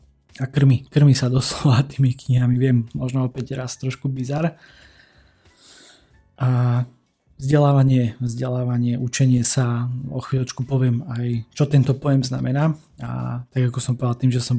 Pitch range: 120-135 Hz